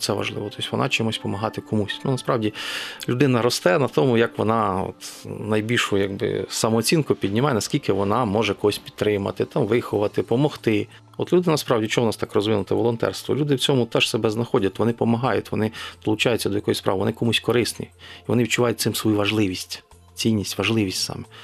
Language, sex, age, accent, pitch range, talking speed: Ukrainian, male, 40-59, native, 105-120 Hz, 175 wpm